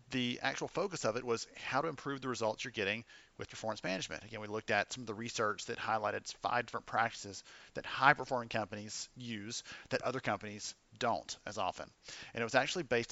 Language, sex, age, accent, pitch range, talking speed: English, male, 40-59, American, 110-125 Hz, 200 wpm